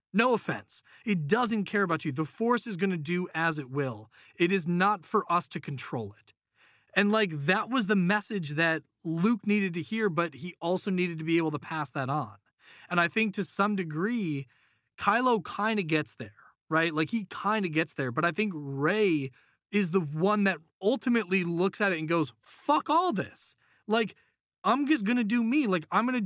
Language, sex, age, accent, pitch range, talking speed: English, male, 20-39, American, 150-205 Hz, 210 wpm